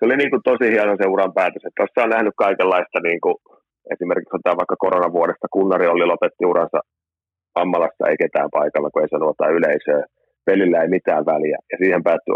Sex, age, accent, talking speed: male, 30-49, native, 185 wpm